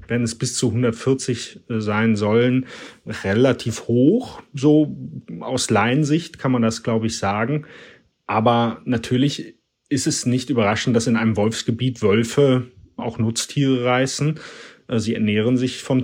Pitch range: 115-130 Hz